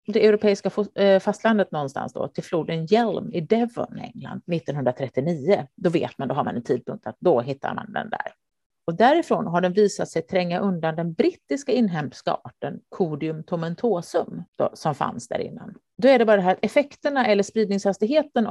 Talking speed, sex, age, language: 175 wpm, female, 40-59, Swedish